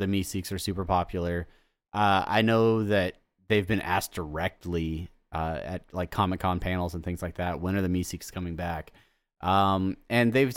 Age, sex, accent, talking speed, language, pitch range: 30-49, male, American, 175 wpm, English, 90-110 Hz